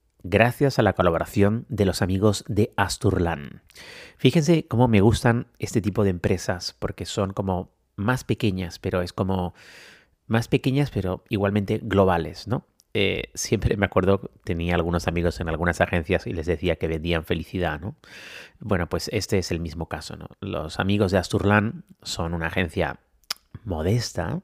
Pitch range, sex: 90-110 Hz, male